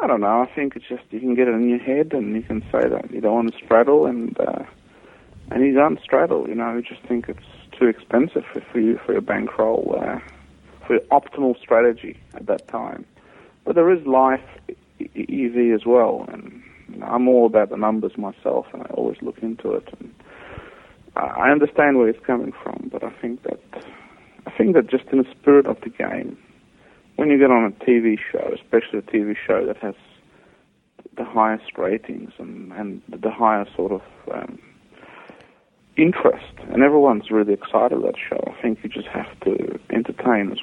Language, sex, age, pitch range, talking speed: English, male, 50-69, 110-130 Hz, 200 wpm